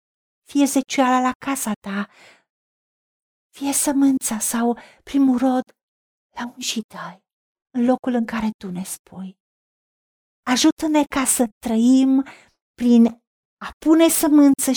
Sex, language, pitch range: female, Romanian, 210-275 Hz